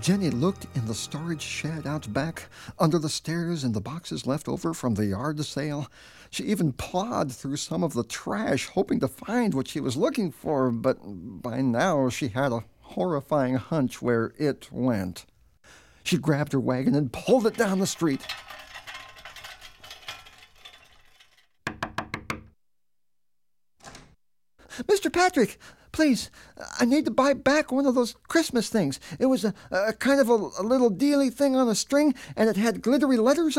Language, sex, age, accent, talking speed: English, male, 50-69, American, 160 wpm